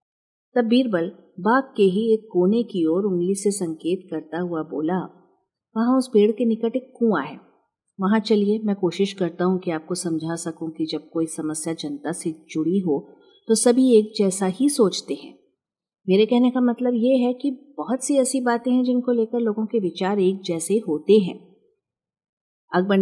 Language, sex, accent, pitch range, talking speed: Hindi, female, native, 175-225 Hz, 180 wpm